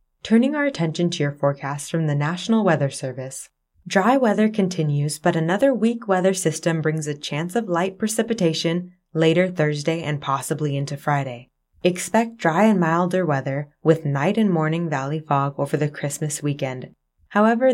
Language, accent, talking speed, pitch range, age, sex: English, American, 160 wpm, 145-200 Hz, 20-39, female